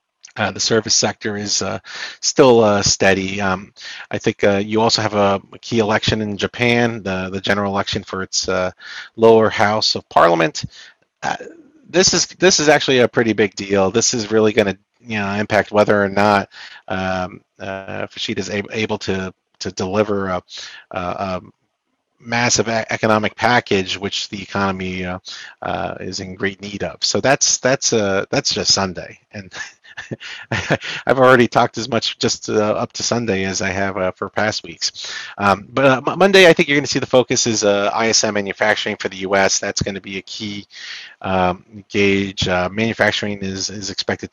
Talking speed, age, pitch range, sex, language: 185 wpm, 40-59, 95-115 Hz, male, English